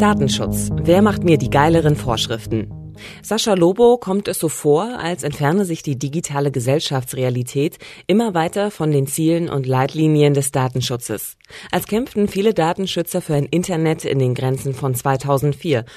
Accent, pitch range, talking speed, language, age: German, 130-175 Hz, 150 wpm, German, 30-49